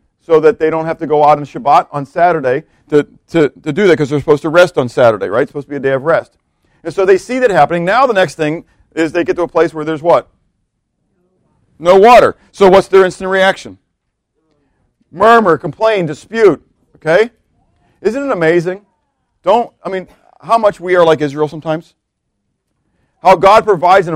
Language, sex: English, male